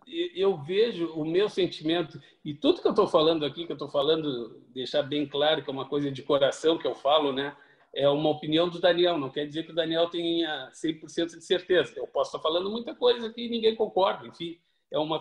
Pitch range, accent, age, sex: 160-220 Hz, Brazilian, 50-69, male